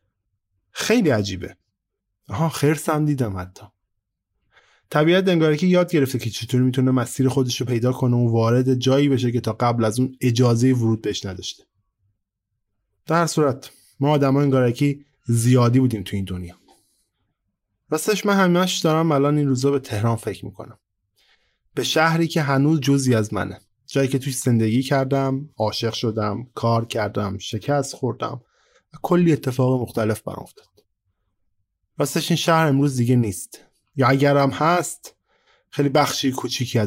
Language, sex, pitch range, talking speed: Persian, male, 105-140 Hz, 140 wpm